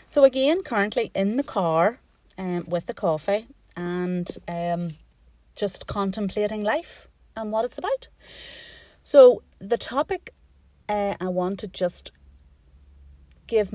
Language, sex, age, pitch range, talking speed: English, female, 30-49, 155-195 Hz, 120 wpm